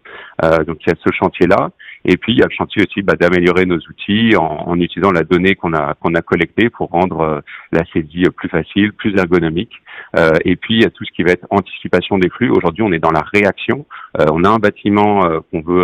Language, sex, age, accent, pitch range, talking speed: French, male, 40-59, French, 85-100 Hz, 250 wpm